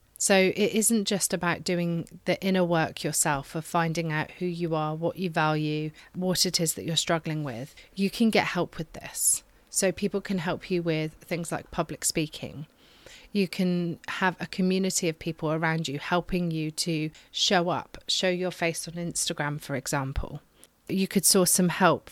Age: 30-49